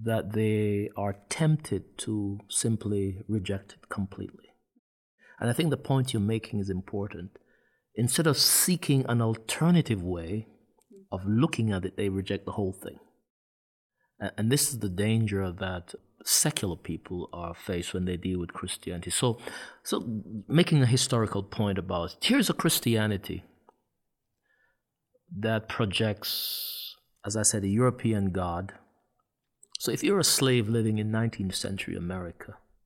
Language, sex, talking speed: English, male, 140 wpm